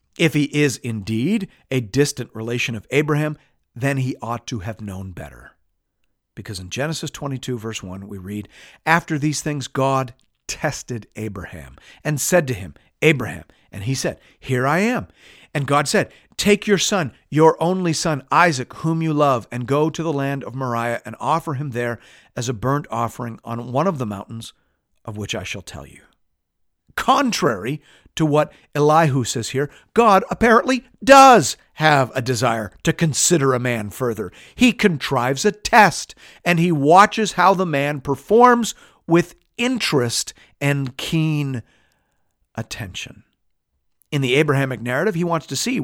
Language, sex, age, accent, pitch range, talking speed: English, male, 50-69, American, 120-175 Hz, 160 wpm